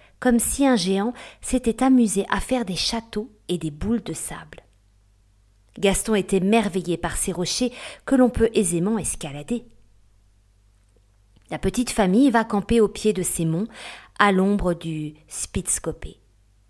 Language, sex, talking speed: French, female, 145 wpm